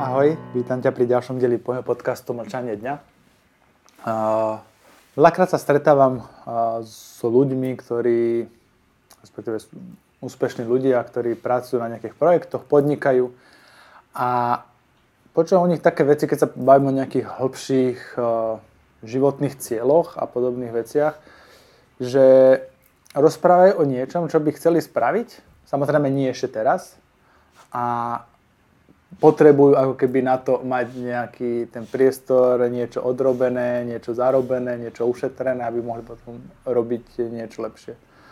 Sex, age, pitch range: male, 20-39, 120-135 Hz